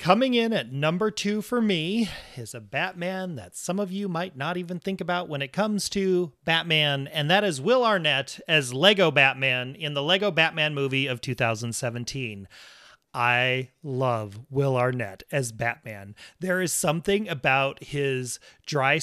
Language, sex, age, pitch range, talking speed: English, male, 30-49, 130-180 Hz, 160 wpm